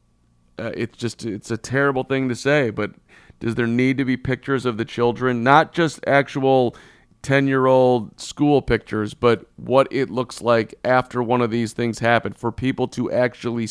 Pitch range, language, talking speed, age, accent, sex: 110-135 Hz, English, 185 wpm, 40-59, American, male